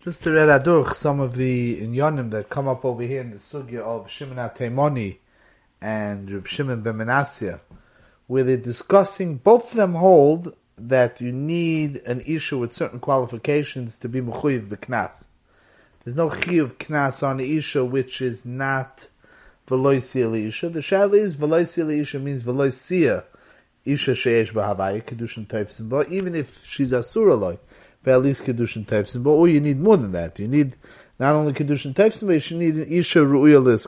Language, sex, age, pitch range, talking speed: English, male, 30-49, 120-155 Hz, 150 wpm